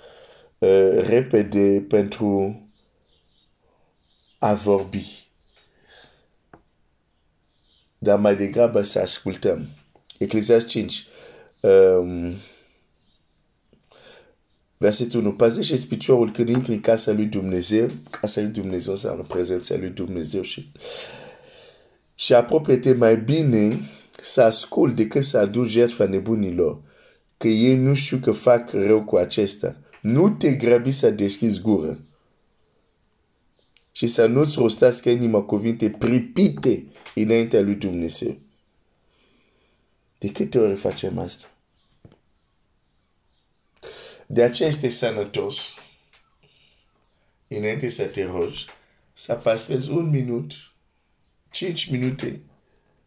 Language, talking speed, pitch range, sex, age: Romanian, 80 wpm, 100-130 Hz, male, 50-69